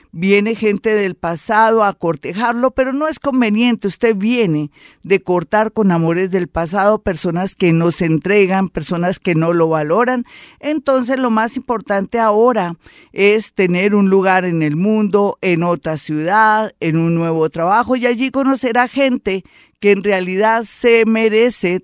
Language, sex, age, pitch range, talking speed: Spanish, female, 50-69, 170-220 Hz, 155 wpm